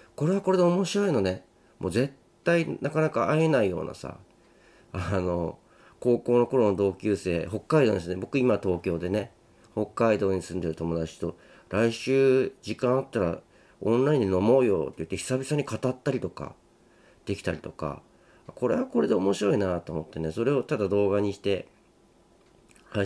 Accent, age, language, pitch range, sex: native, 40-59, Japanese, 90-120 Hz, male